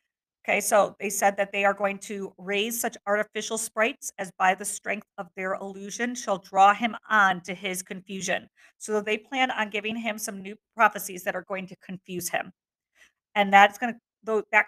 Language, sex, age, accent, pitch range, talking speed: English, female, 50-69, American, 185-215 Hz, 190 wpm